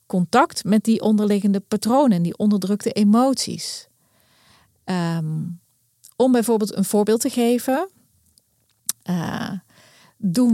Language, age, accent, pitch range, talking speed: Dutch, 40-59, Dutch, 180-230 Hz, 95 wpm